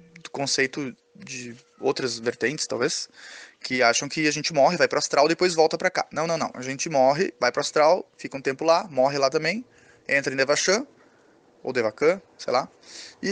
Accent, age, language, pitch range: Brazilian, 20-39, Portuguese, 140-220 Hz